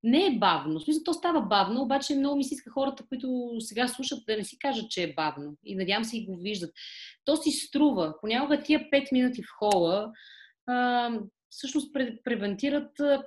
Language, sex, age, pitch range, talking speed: Bulgarian, female, 30-49, 200-275 Hz, 190 wpm